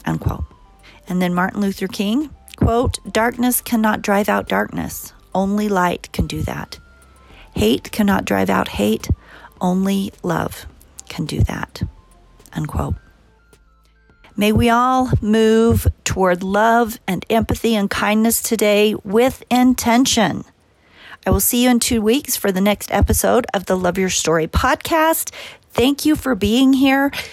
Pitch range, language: 175-230 Hz, English